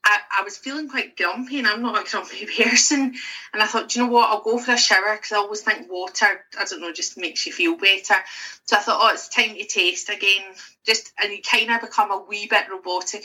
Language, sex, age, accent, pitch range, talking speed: English, female, 30-49, British, 190-310 Hz, 255 wpm